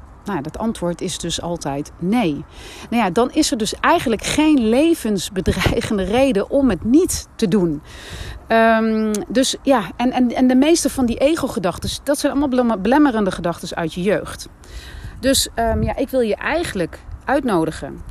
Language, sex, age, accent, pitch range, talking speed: Dutch, female, 30-49, Dutch, 175-265 Hz, 160 wpm